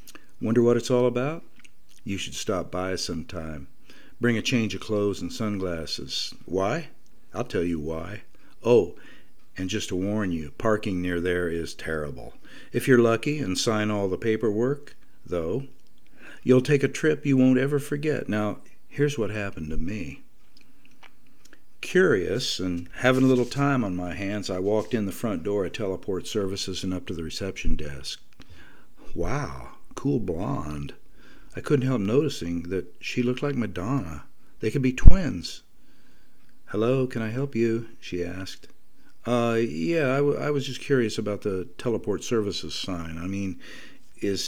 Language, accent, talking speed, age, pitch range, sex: English, American, 160 wpm, 60-79, 90-130 Hz, male